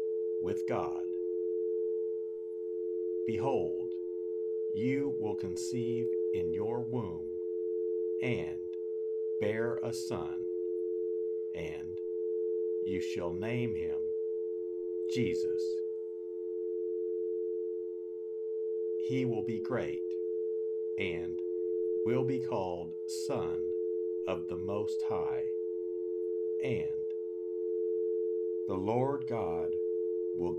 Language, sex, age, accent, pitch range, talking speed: English, male, 50-69, American, 90-110 Hz, 75 wpm